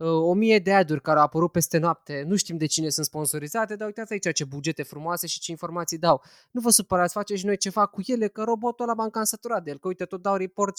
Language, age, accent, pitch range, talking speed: Romanian, 20-39, native, 140-195 Hz, 255 wpm